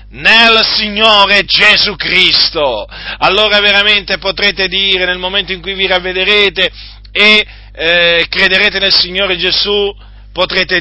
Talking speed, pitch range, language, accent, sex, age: 115 wpm, 185-280 Hz, Italian, native, male, 50-69